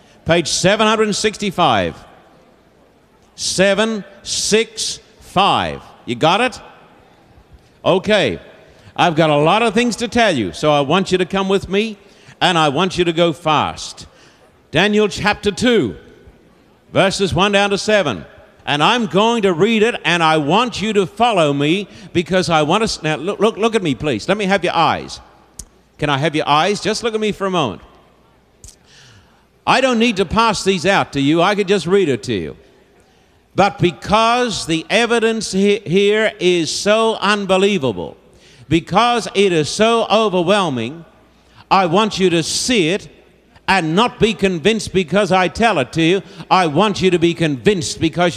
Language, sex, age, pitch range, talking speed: English, male, 60-79, 170-215 Hz, 165 wpm